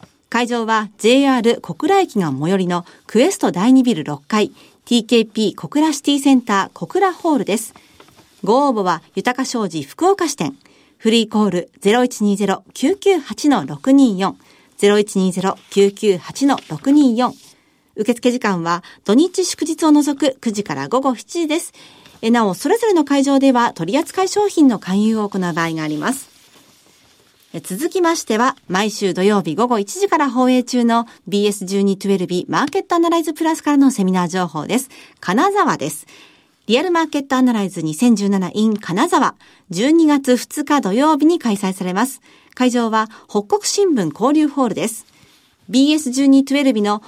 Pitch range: 200-295 Hz